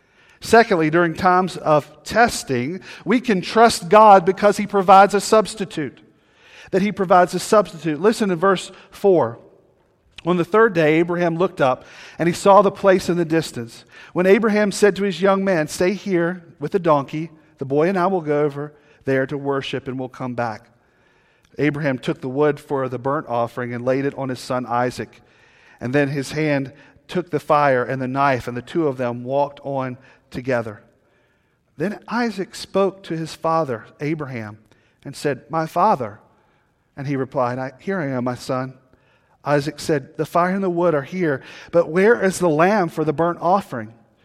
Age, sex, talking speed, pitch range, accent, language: 40-59, male, 180 wpm, 130-180 Hz, American, English